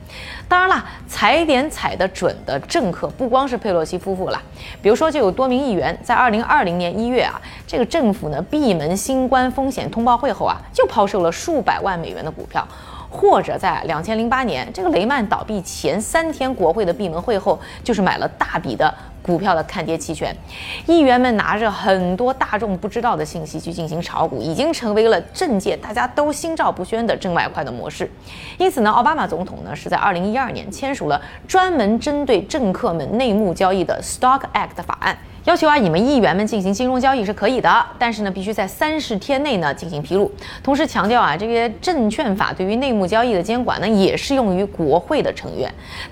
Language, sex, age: Chinese, female, 20-39